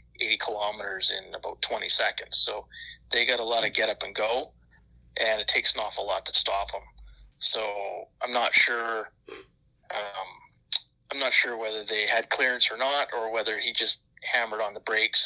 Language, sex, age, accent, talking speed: English, male, 30-49, American, 185 wpm